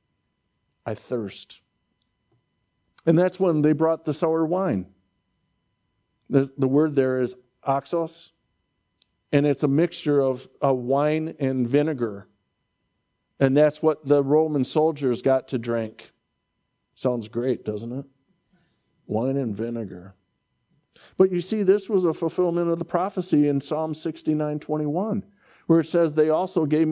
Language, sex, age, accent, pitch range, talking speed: English, male, 50-69, American, 110-155 Hz, 135 wpm